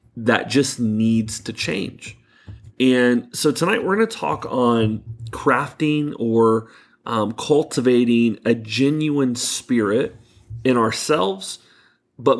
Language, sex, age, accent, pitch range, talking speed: English, male, 30-49, American, 115-140 Hz, 110 wpm